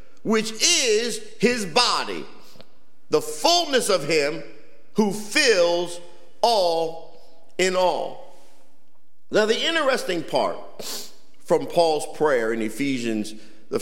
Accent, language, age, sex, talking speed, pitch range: American, English, 50-69, male, 100 wpm, 170-260 Hz